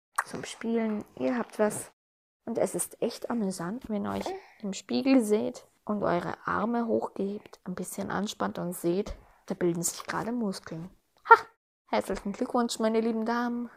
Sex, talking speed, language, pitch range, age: female, 155 wpm, German, 185-250 Hz, 20-39